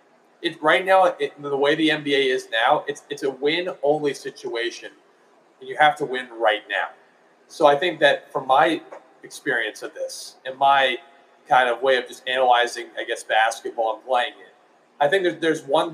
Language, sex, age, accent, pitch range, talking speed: English, male, 30-49, American, 130-170 Hz, 190 wpm